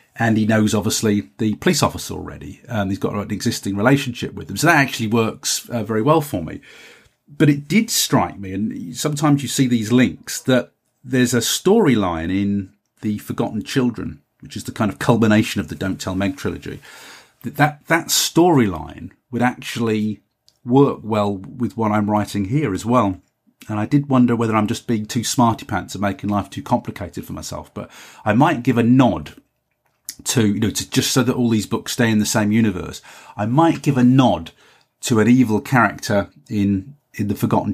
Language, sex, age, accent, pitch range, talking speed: English, male, 40-59, British, 100-125 Hz, 195 wpm